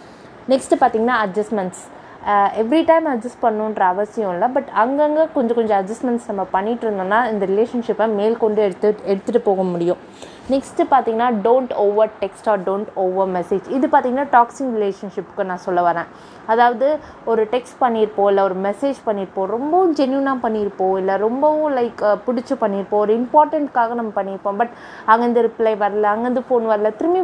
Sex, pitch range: female, 200-255 Hz